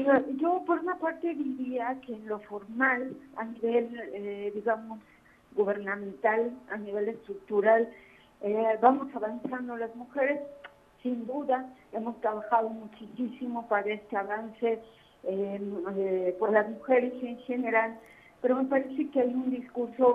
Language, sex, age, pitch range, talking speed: Spanish, female, 50-69, 220-255 Hz, 130 wpm